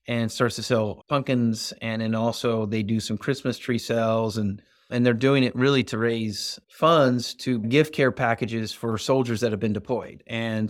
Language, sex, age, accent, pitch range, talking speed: English, male, 30-49, American, 110-135 Hz, 190 wpm